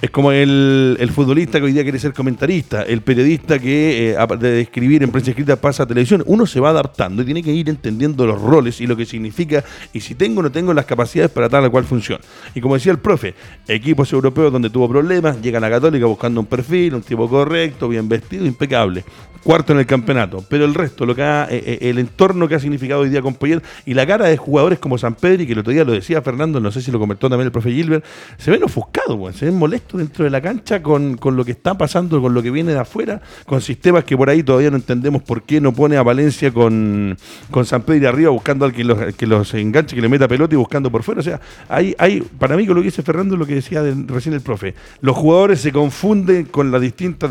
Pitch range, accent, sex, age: 120-155 Hz, Argentinian, male, 40-59